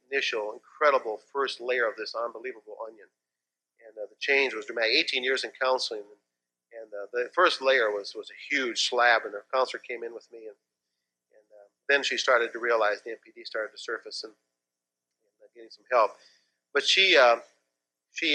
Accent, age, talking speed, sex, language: American, 40-59, 195 wpm, male, English